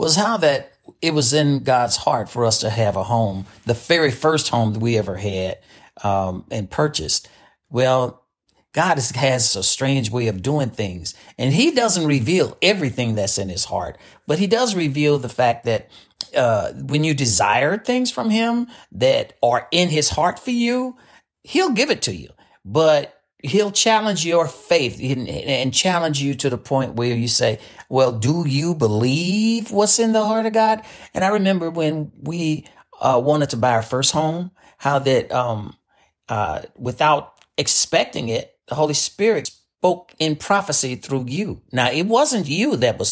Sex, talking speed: male, 175 wpm